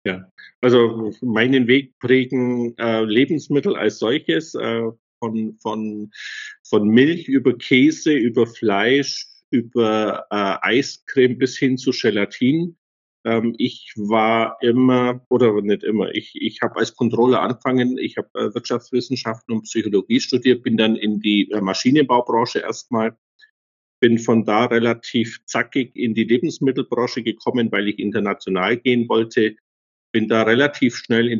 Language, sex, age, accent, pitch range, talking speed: German, male, 50-69, German, 110-130 Hz, 135 wpm